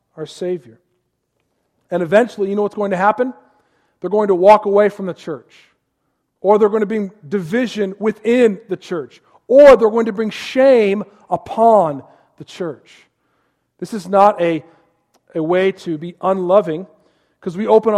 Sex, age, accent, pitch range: male, 40-59, American, 165-215 Hz